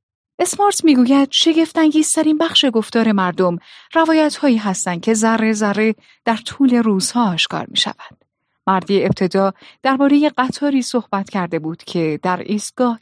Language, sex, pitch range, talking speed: Persian, female, 185-270 Hz, 130 wpm